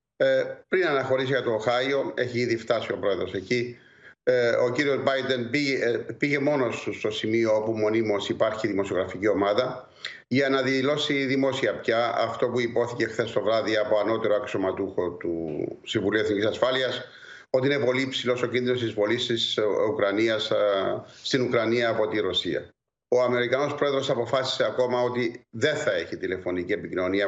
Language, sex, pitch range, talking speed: Greek, male, 115-140 Hz, 155 wpm